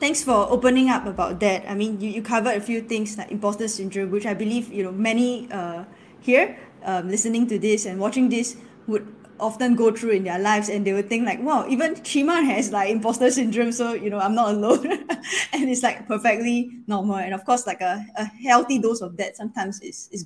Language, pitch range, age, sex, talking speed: English, 195-240 Hz, 10-29, female, 220 wpm